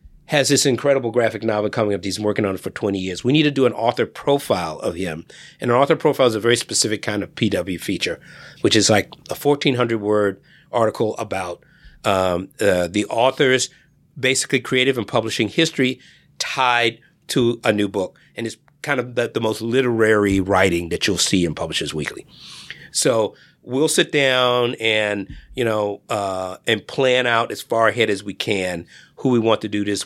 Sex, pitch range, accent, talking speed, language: male, 95-125 Hz, American, 190 wpm, English